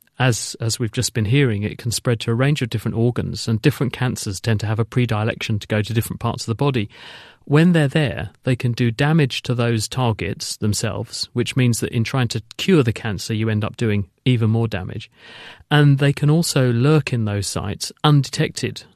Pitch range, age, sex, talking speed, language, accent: 115-140 Hz, 40-59, male, 210 wpm, English, British